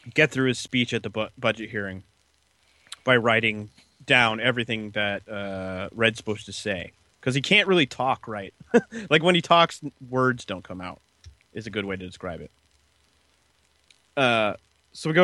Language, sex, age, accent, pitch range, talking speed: English, male, 30-49, American, 90-130 Hz, 175 wpm